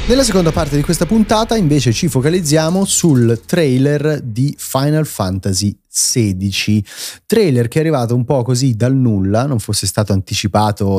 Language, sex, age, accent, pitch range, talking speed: Italian, male, 30-49, native, 105-155 Hz, 155 wpm